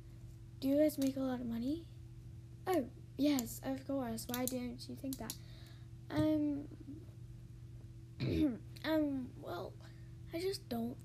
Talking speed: 125 wpm